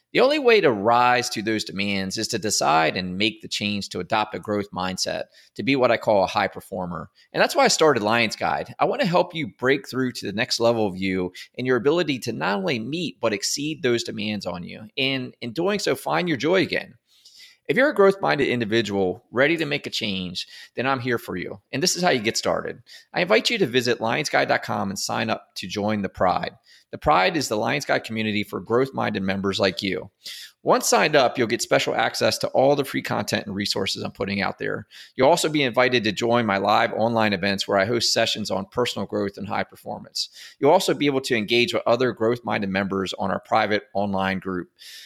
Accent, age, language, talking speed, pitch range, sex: American, 30-49, English, 225 wpm, 100-130 Hz, male